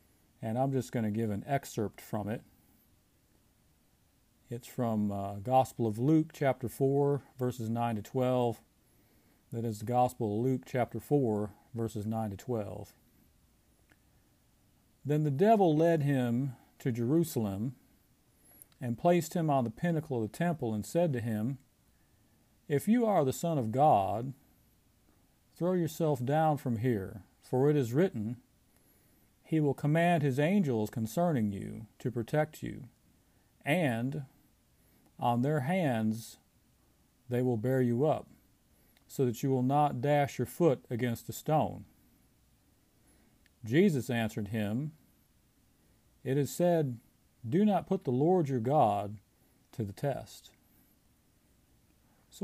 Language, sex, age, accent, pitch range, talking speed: English, male, 40-59, American, 110-145 Hz, 135 wpm